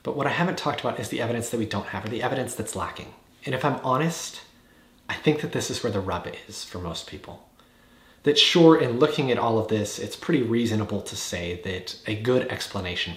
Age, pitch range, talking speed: 30-49, 100-125 Hz, 235 wpm